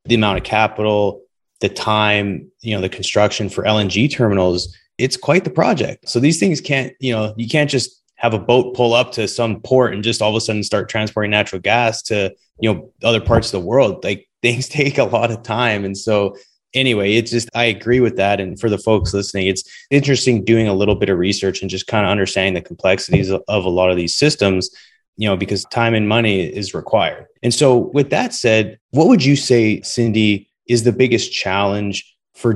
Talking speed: 215 wpm